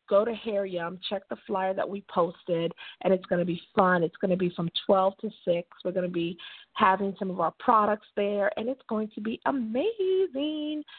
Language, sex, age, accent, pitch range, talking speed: English, female, 40-59, American, 195-275 Hz, 220 wpm